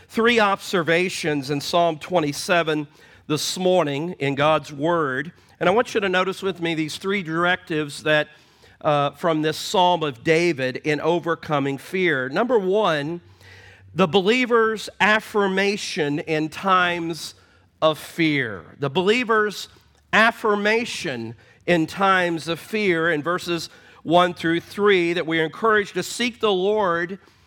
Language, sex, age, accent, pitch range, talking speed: English, male, 40-59, American, 150-195 Hz, 130 wpm